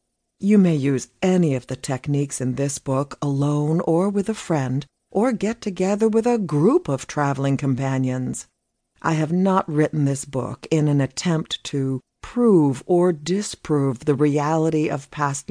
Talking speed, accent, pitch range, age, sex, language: 160 wpm, American, 140-195 Hz, 60-79, female, English